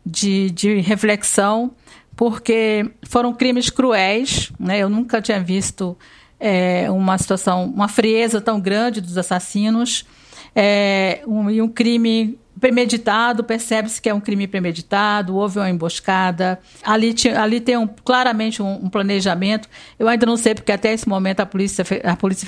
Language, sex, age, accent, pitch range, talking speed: Portuguese, female, 50-69, Brazilian, 195-230 Hz, 140 wpm